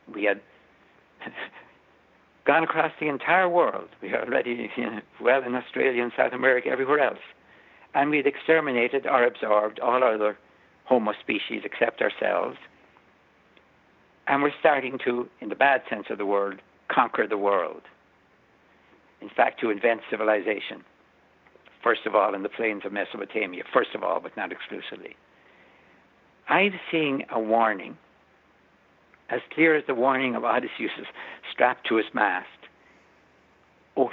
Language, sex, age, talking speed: English, male, 60-79, 140 wpm